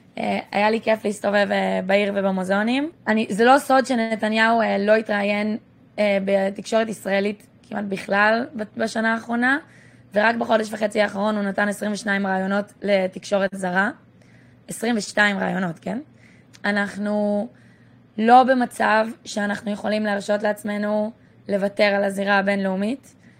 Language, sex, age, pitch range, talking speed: Hebrew, female, 20-39, 200-225 Hz, 110 wpm